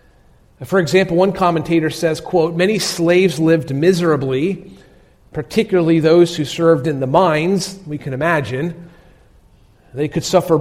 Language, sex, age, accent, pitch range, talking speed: English, male, 40-59, American, 135-185 Hz, 130 wpm